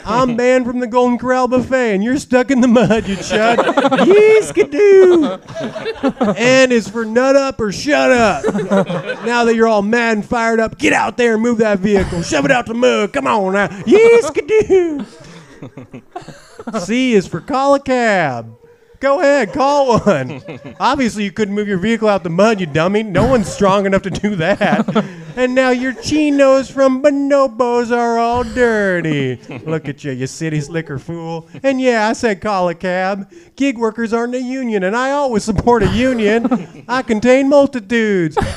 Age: 30-49